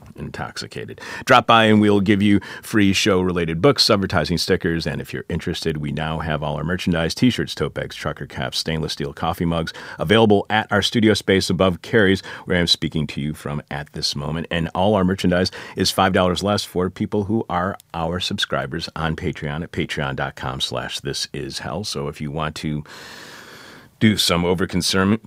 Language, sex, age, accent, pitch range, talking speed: English, male, 40-59, American, 80-100 Hz, 185 wpm